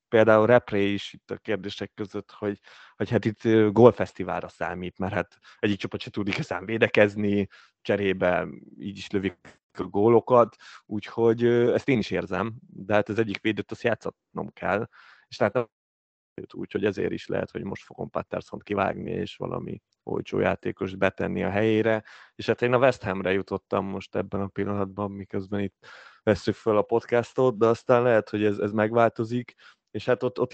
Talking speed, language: 170 wpm, Hungarian